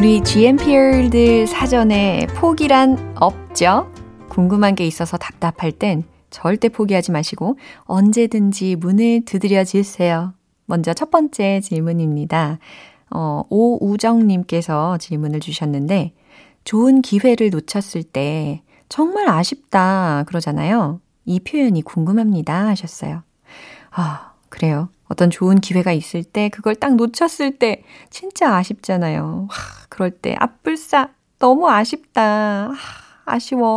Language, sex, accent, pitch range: Korean, female, native, 170-235 Hz